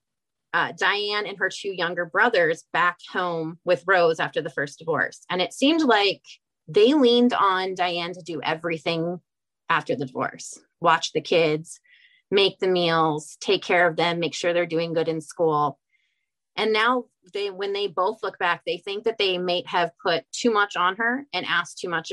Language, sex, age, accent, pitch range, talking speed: English, female, 30-49, American, 170-225 Hz, 185 wpm